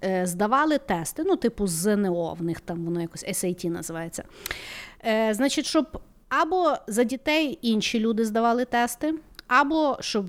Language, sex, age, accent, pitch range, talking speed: Ukrainian, female, 30-49, native, 190-260 Hz, 135 wpm